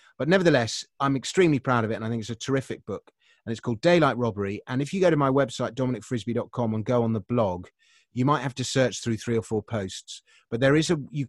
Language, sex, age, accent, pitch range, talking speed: English, male, 30-49, British, 110-145 Hz, 250 wpm